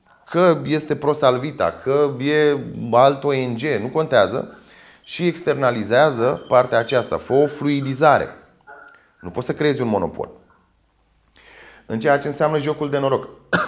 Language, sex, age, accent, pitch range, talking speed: Romanian, male, 30-49, native, 95-145 Hz, 125 wpm